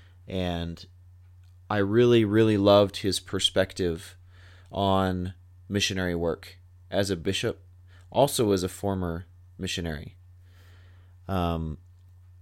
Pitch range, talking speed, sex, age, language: 90-105 Hz, 90 wpm, male, 30-49, English